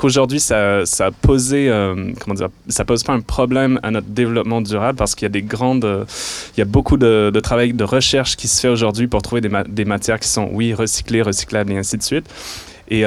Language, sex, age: French, male, 20-39